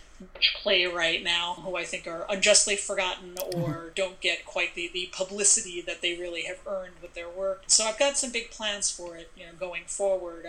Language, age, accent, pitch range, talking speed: English, 30-49, American, 180-200 Hz, 210 wpm